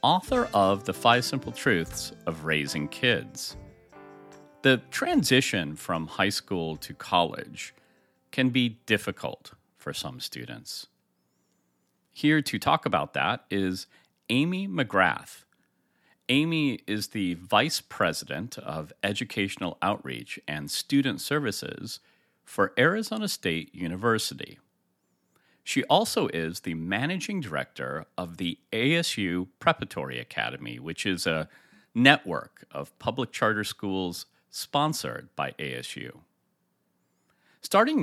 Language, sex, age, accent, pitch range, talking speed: English, male, 40-59, American, 90-145 Hz, 105 wpm